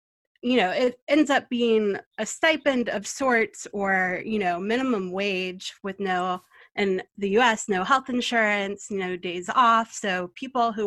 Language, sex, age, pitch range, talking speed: English, female, 30-49, 180-225 Hz, 160 wpm